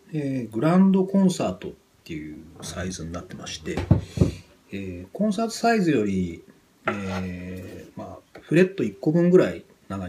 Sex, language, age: male, Japanese, 40-59